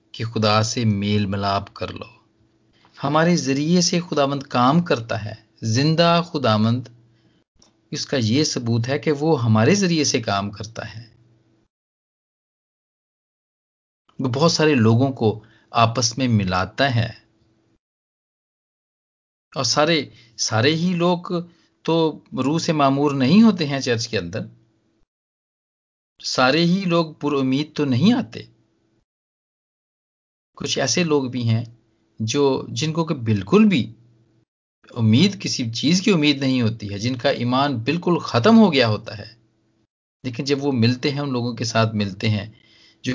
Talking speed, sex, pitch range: 135 wpm, male, 110-145 Hz